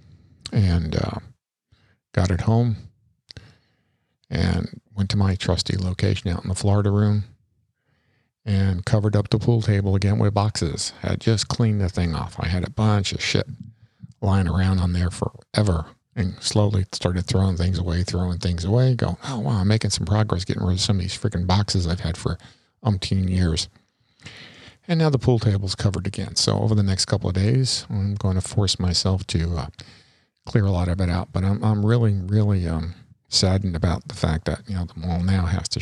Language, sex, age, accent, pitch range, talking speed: English, male, 50-69, American, 90-110 Hz, 195 wpm